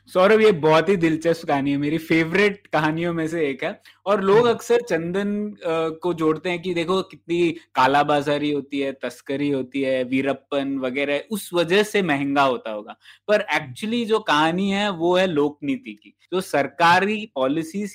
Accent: native